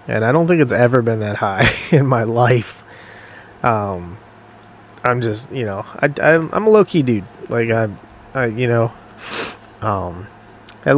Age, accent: 20-39, American